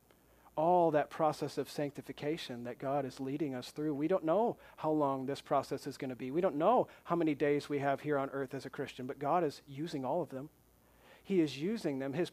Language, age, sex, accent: English, 40-59, male, American